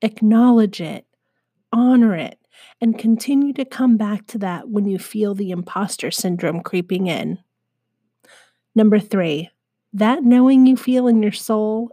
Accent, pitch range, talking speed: American, 190-235 Hz, 140 wpm